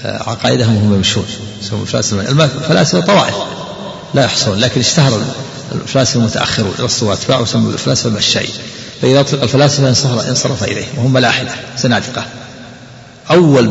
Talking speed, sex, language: 115 wpm, male, Arabic